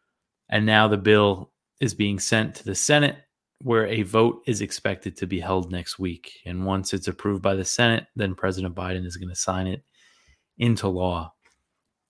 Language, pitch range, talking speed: English, 95-115 Hz, 185 wpm